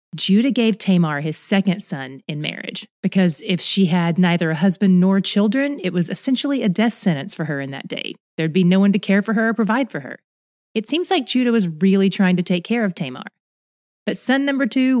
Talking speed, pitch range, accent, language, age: 225 wpm, 170-220 Hz, American, English, 30-49